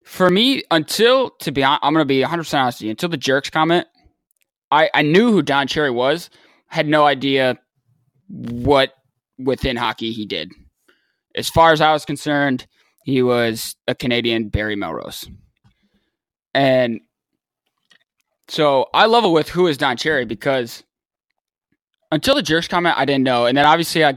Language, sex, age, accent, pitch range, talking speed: English, male, 20-39, American, 120-155 Hz, 165 wpm